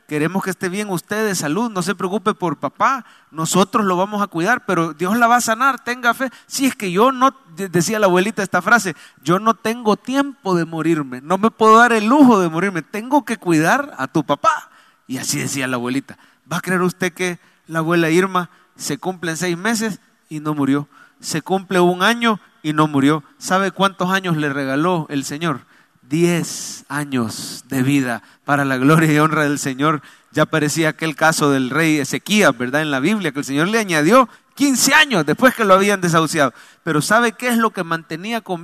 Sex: male